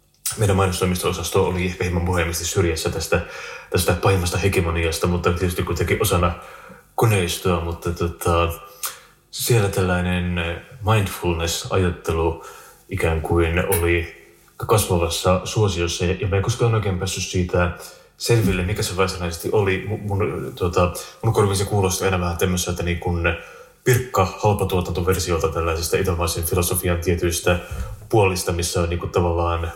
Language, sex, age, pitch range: Finnish, male, 30-49, 85-95 Hz